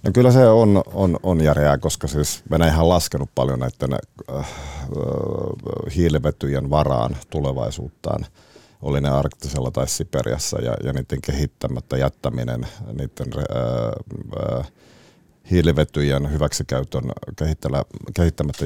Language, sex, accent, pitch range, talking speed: Finnish, male, native, 70-80 Hz, 110 wpm